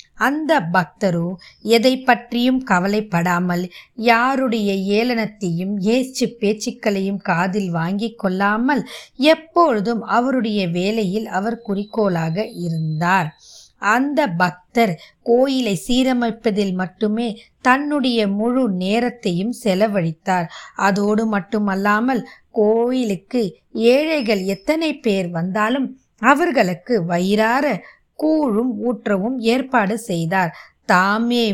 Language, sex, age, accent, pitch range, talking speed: Tamil, female, 20-39, native, 200-255 Hz, 75 wpm